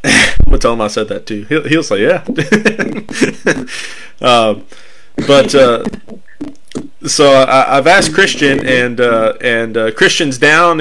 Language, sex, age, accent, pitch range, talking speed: English, male, 20-39, American, 115-135 Hz, 150 wpm